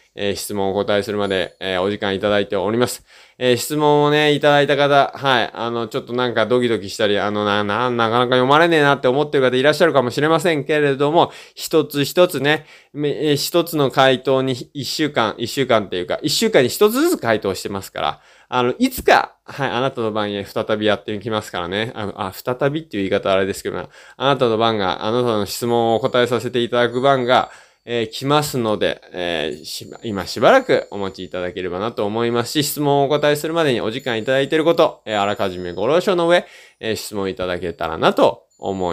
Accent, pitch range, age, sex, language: native, 110-150 Hz, 20-39, male, Japanese